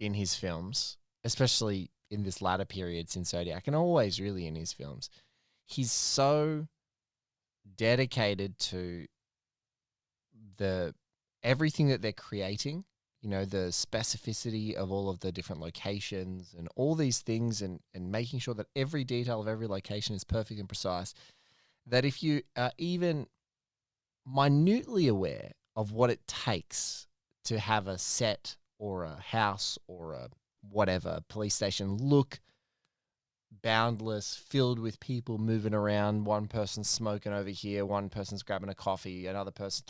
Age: 20-39